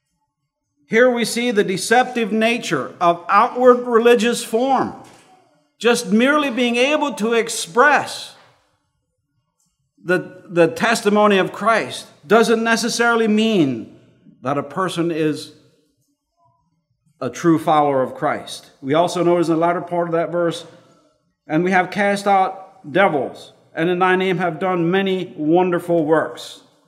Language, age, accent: English, 50-69, American